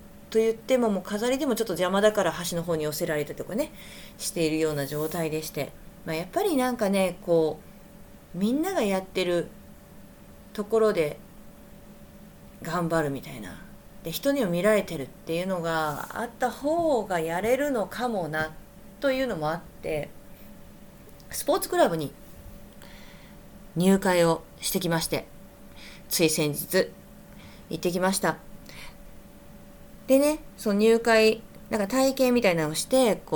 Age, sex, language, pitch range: 40-59, female, Japanese, 165-225 Hz